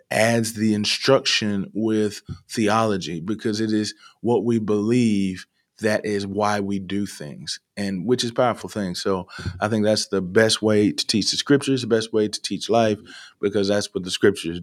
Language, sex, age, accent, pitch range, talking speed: English, male, 20-39, American, 105-125 Hz, 180 wpm